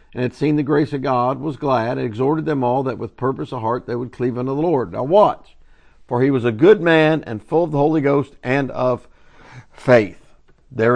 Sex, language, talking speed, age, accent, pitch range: male, English, 230 wpm, 50-69, American, 115-145 Hz